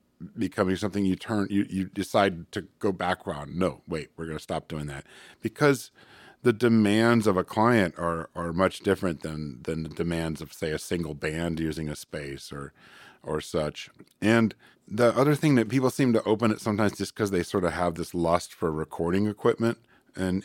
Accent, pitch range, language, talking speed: American, 80-100 Hz, English, 195 wpm